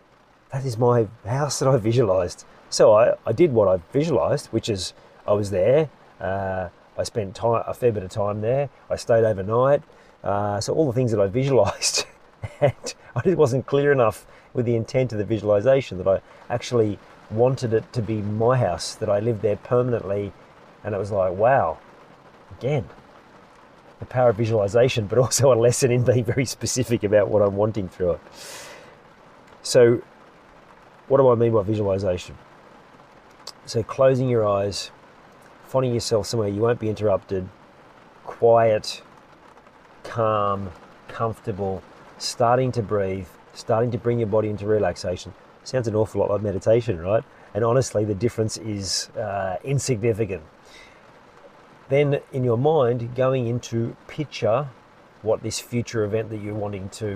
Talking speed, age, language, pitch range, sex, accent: 155 wpm, 40-59, English, 105-125 Hz, male, Australian